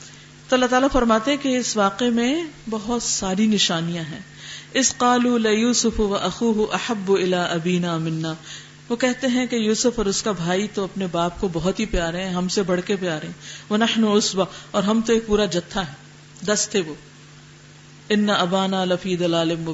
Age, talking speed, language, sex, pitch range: 50-69, 155 wpm, Urdu, female, 170-255 Hz